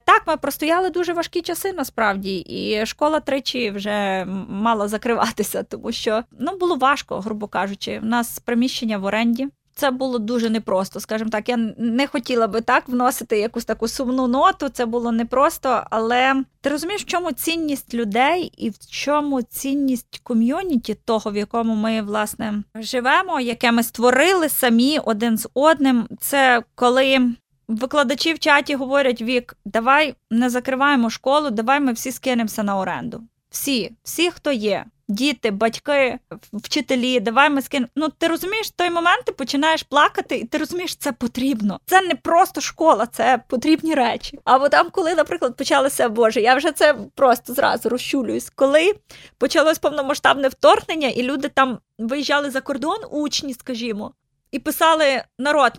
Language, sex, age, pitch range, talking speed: Ukrainian, female, 20-39, 230-290 Hz, 155 wpm